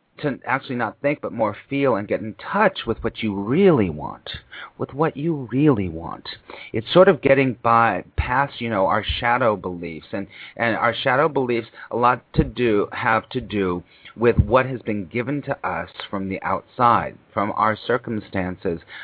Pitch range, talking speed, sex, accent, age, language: 100-135 Hz, 180 wpm, male, American, 40-59, English